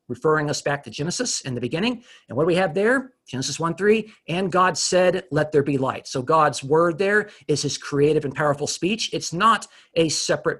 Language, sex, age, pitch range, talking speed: English, male, 40-59, 140-175 Hz, 215 wpm